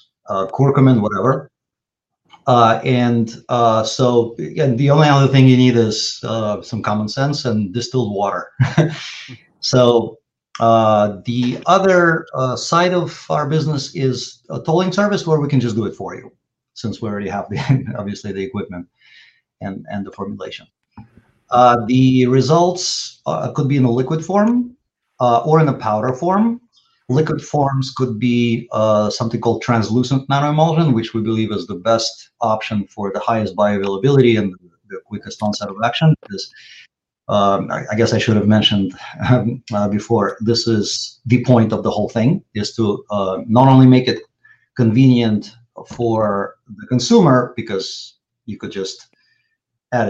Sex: male